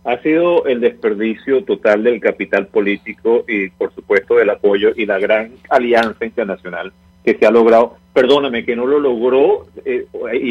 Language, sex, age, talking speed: English, male, 50-69, 165 wpm